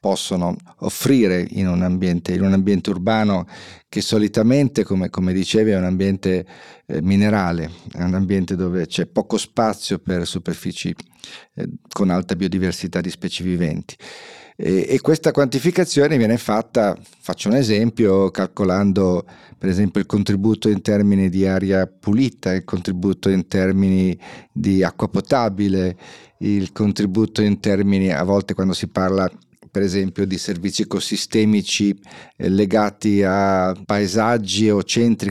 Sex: male